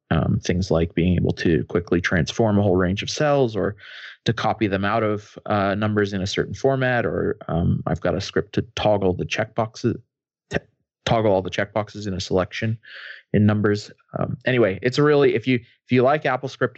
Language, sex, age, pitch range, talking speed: English, male, 20-39, 95-115 Hz, 195 wpm